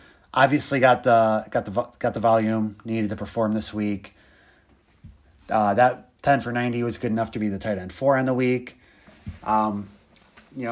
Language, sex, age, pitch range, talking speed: English, male, 30-49, 100-120 Hz, 180 wpm